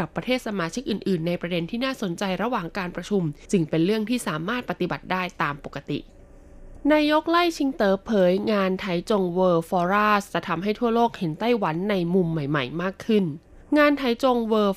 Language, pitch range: Thai, 170-215 Hz